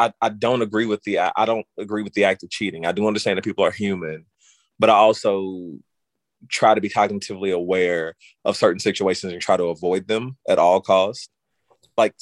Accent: American